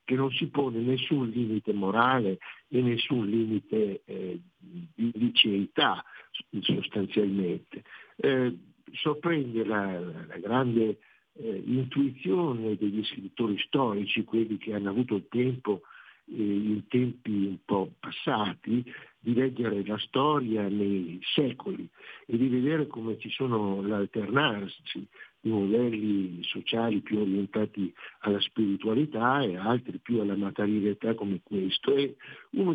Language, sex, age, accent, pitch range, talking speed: Italian, male, 60-79, native, 105-130 Hz, 115 wpm